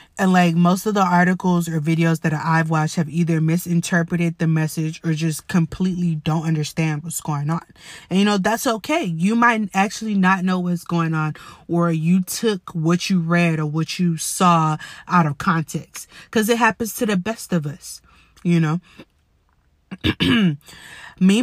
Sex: female